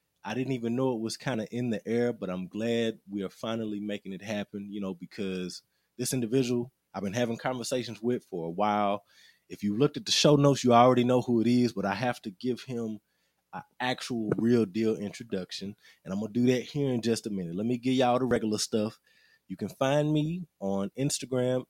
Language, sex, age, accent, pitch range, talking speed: English, male, 20-39, American, 105-135 Hz, 225 wpm